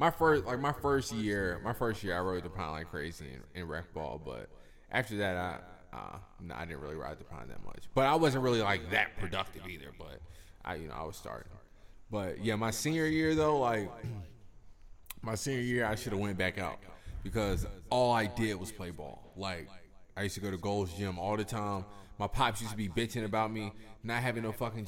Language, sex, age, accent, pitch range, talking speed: English, male, 20-39, American, 95-115 Hz, 220 wpm